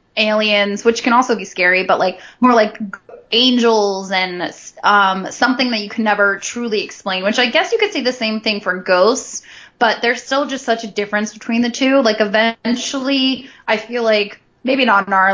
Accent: American